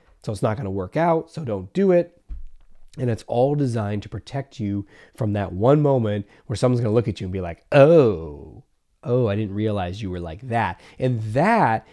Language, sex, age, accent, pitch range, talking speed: English, male, 30-49, American, 100-135 Hz, 215 wpm